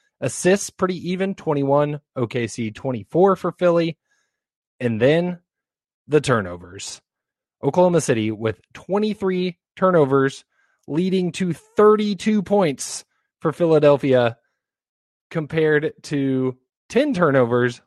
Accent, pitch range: American, 120-165 Hz